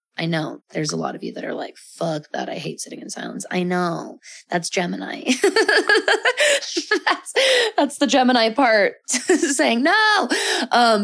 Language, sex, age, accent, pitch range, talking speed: English, female, 20-39, American, 190-240 Hz, 160 wpm